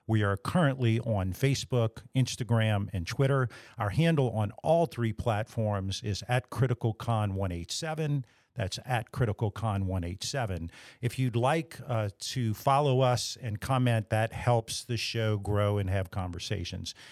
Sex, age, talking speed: male, 50-69, 130 wpm